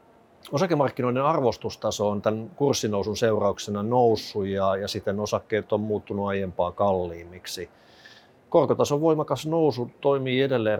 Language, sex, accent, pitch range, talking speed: Finnish, male, native, 95-120 Hz, 110 wpm